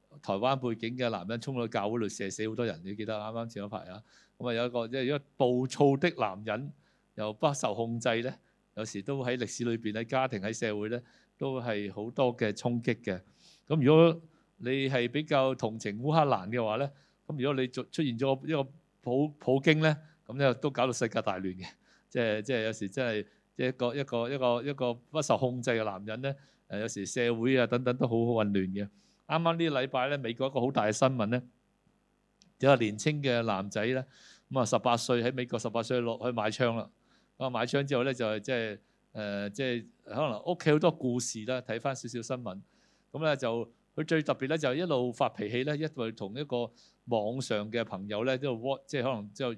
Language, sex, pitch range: Chinese, male, 115-140 Hz